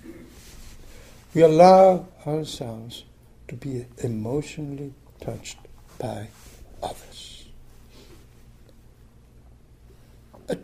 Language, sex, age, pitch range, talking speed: English, male, 60-79, 135-215 Hz, 55 wpm